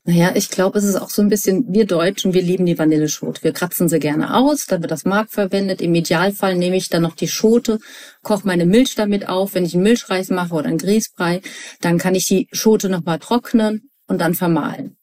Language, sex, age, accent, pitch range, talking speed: German, female, 40-59, German, 175-220 Hz, 225 wpm